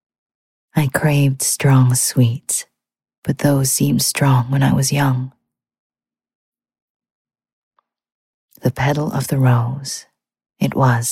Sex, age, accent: female, 30-49, American